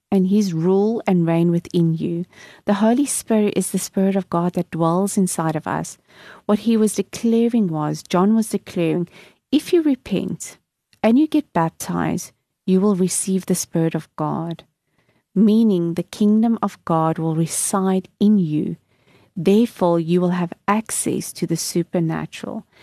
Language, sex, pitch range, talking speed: English, female, 170-220 Hz, 155 wpm